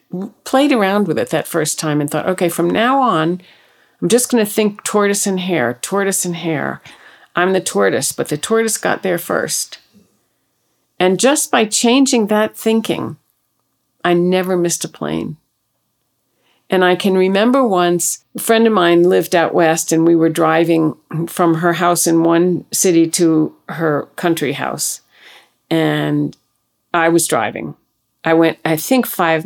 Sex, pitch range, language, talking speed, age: female, 160-190 Hz, English, 160 wpm, 50-69